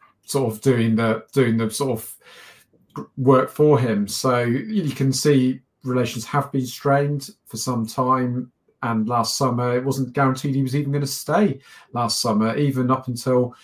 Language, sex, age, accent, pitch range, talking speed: English, male, 40-59, British, 115-140 Hz, 170 wpm